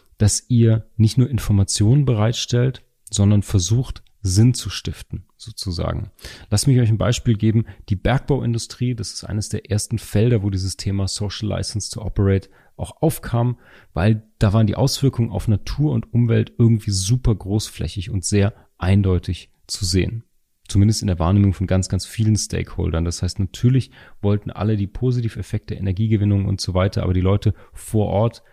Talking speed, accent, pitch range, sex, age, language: 165 wpm, German, 95-115 Hz, male, 30-49, English